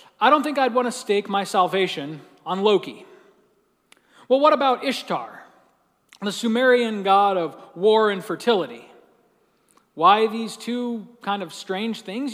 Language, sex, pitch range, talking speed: English, male, 190-245 Hz, 140 wpm